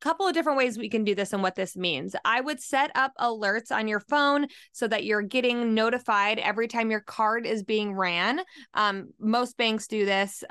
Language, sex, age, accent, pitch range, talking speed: English, female, 20-39, American, 200-250 Hz, 210 wpm